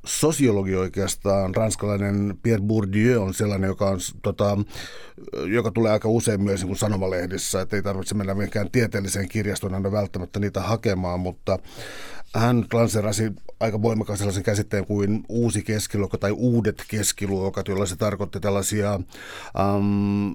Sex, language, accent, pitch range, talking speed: male, Finnish, native, 95-115 Hz, 135 wpm